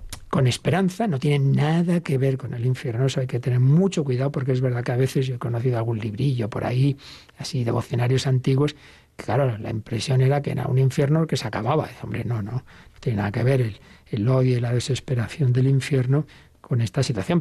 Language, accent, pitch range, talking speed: Spanish, Spanish, 125-150 Hz, 220 wpm